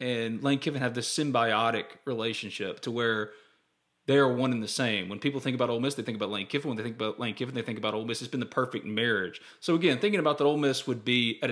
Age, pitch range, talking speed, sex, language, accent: 30-49, 120-175 Hz, 270 wpm, male, English, American